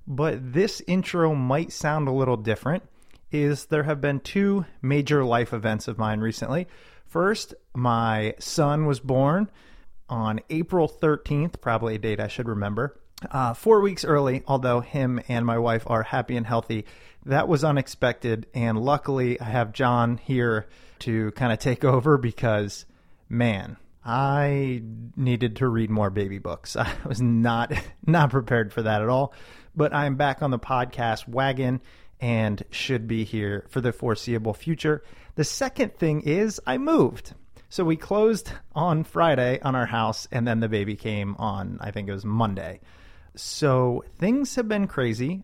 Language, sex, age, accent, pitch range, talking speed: English, male, 30-49, American, 115-150 Hz, 160 wpm